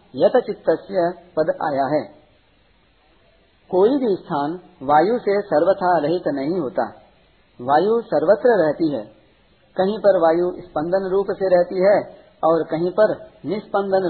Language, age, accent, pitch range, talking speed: Hindi, 50-69, native, 155-205 Hz, 120 wpm